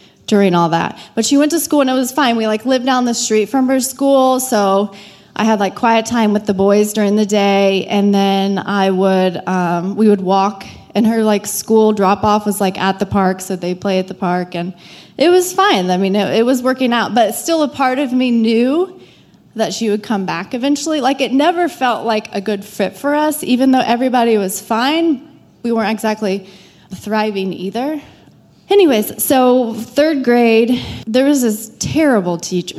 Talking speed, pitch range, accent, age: 205 wpm, 190-250 Hz, American, 20-39